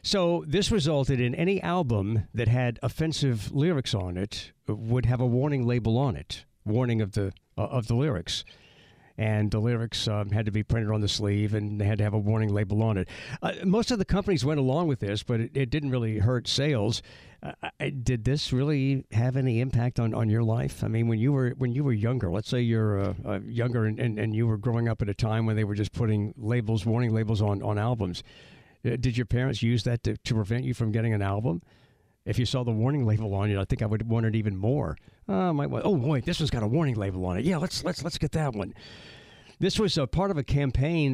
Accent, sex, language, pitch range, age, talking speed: American, male, English, 110-135 Hz, 60-79, 240 wpm